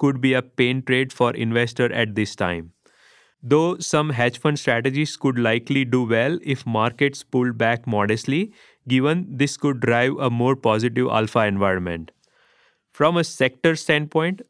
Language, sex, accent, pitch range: English, male, Indian, 120-150 Hz